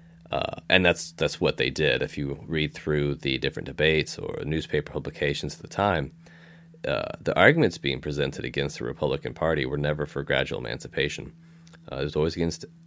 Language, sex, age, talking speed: English, male, 30-49, 180 wpm